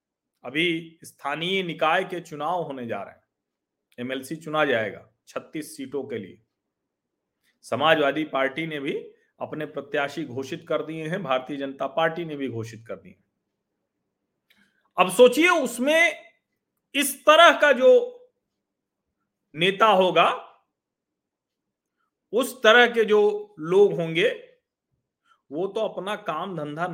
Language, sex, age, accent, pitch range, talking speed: Hindi, male, 40-59, native, 150-225 Hz, 120 wpm